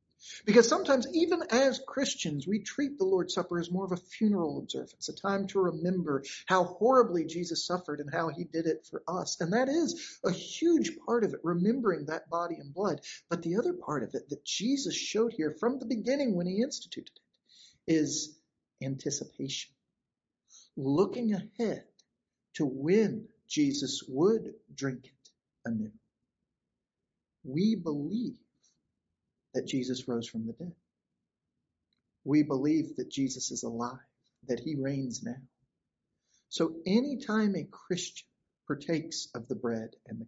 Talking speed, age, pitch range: 150 wpm, 50-69, 140-210 Hz